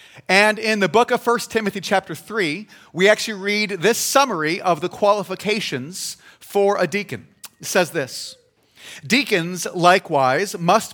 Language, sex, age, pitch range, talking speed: English, male, 30-49, 175-225 Hz, 145 wpm